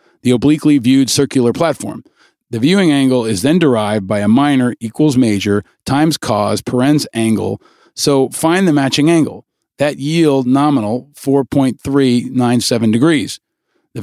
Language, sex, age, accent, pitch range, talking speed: English, male, 40-59, American, 115-150 Hz, 135 wpm